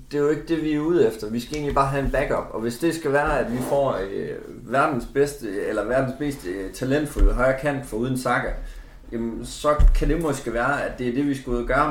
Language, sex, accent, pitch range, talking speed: Danish, male, native, 95-130 Hz, 250 wpm